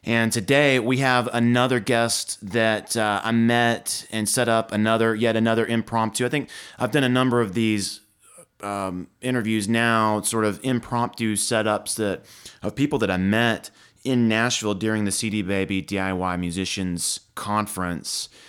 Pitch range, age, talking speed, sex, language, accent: 105-120 Hz, 30-49, 155 wpm, male, English, American